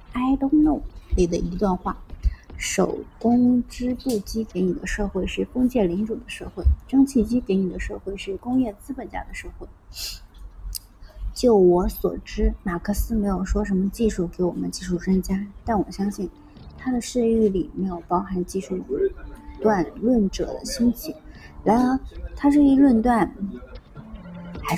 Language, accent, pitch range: Chinese, native, 180-240 Hz